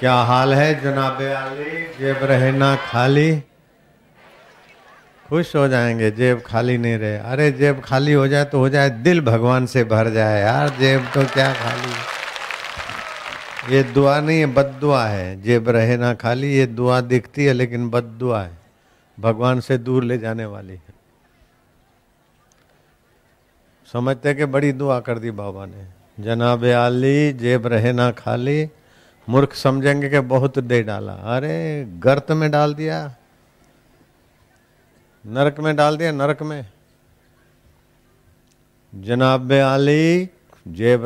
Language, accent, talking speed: Hindi, native, 130 wpm